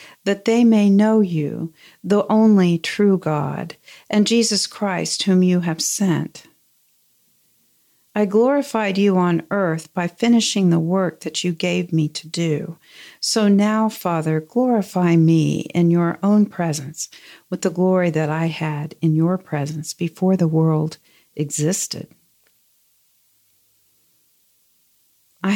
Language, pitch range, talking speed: English, 165-210 Hz, 125 wpm